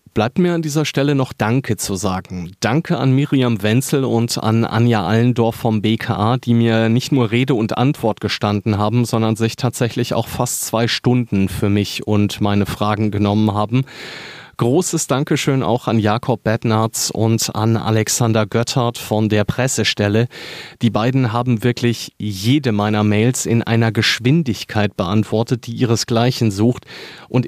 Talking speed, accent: 155 wpm, German